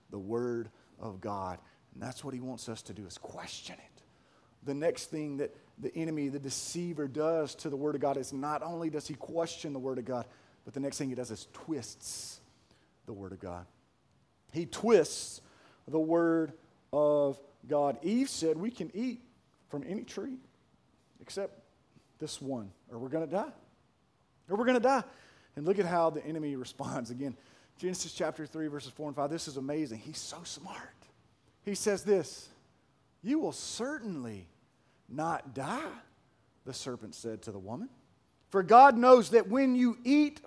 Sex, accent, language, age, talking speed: male, American, English, 40-59, 180 wpm